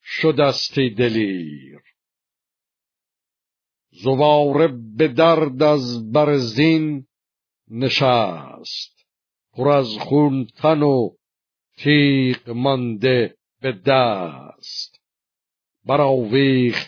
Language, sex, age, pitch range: Persian, male, 50-69, 110-145 Hz